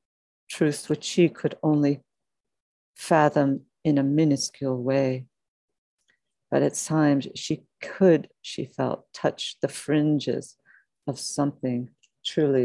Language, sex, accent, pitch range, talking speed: English, female, American, 130-145 Hz, 110 wpm